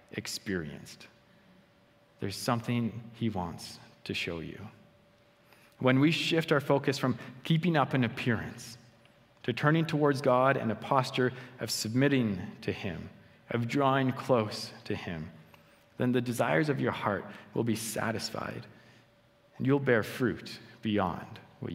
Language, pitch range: English, 105-130 Hz